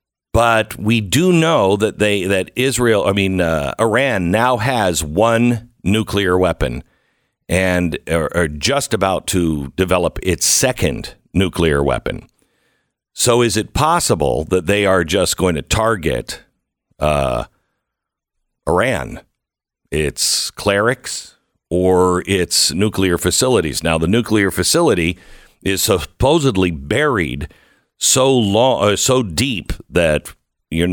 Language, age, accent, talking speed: English, 50-69, American, 120 wpm